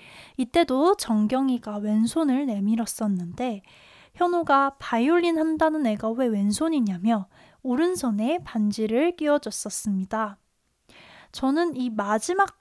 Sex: female